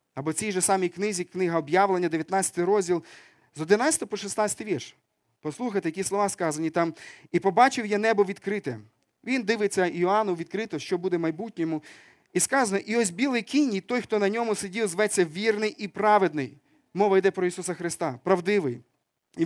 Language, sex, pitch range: Ukrainian, male, 165-210 Hz